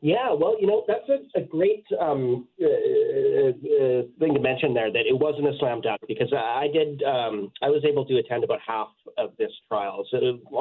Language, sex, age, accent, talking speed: English, male, 30-49, American, 220 wpm